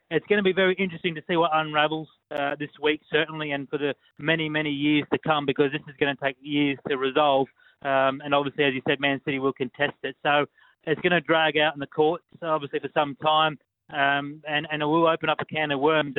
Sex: male